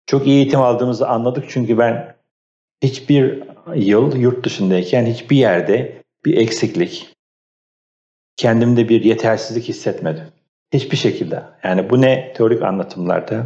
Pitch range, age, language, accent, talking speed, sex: 95-130 Hz, 50-69, Turkish, native, 115 wpm, male